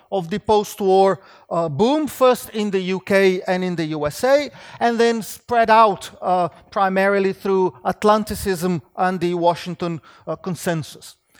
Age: 40-59